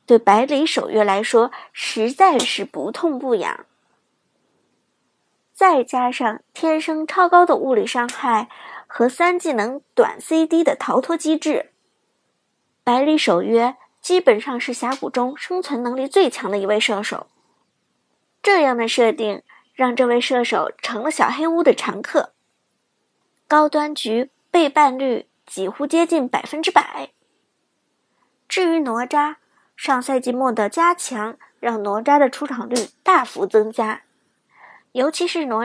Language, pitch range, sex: Chinese, 240-320 Hz, male